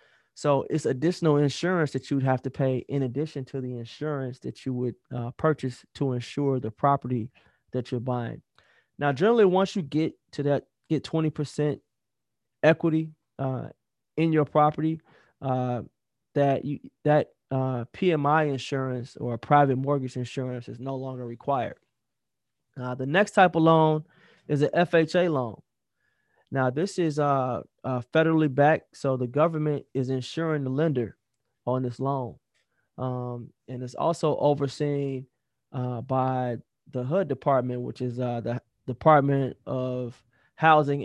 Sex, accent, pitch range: male, American, 125-155 Hz